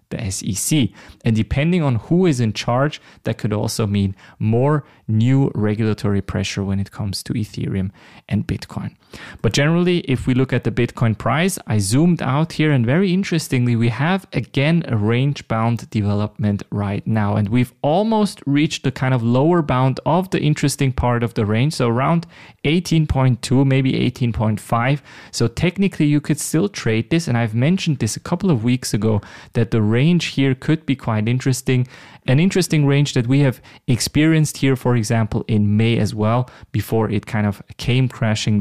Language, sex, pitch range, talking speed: English, male, 110-140 Hz, 175 wpm